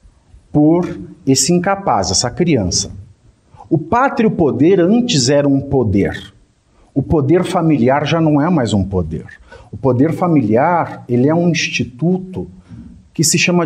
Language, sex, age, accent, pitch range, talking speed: English, male, 50-69, Brazilian, 110-170 Hz, 125 wpm